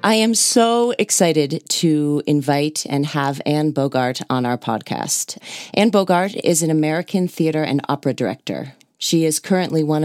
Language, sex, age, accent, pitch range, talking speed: English, female, 40-59, American, 135-165 Hz, 155 wpm